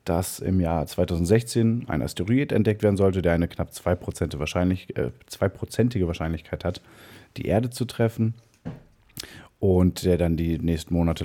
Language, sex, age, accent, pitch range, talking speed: German, male, 30-49, German, 85-100 Hz, 145 wpm